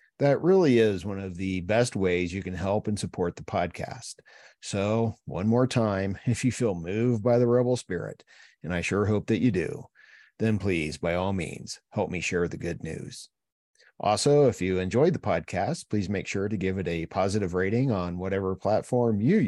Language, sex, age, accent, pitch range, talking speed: English, male, 50-69, American, 90-115 Hz, 195 wpm